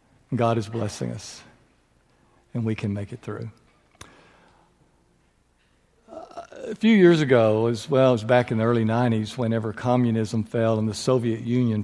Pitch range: 115-150 Hz